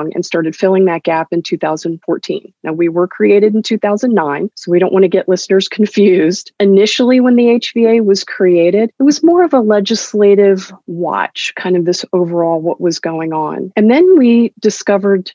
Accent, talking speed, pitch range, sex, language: American, 180 wpm, 180-220 Hz, female, English